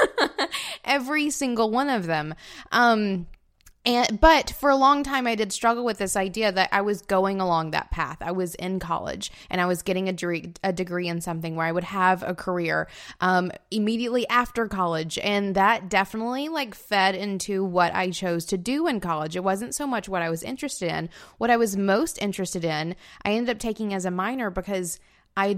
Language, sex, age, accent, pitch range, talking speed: English, female, 20-39, American, 175-220 Hz, 200 wpm